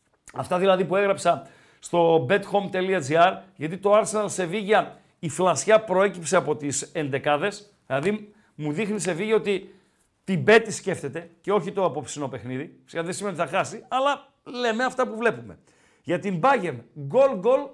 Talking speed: 140 wpm